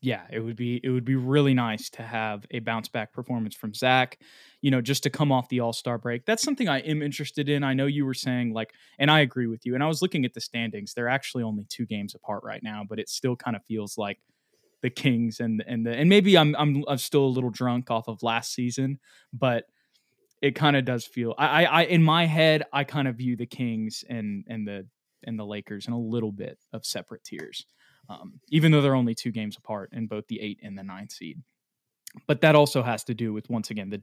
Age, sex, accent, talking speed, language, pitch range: 20-39, male, American, 245 wpm, English, 115-140 Hz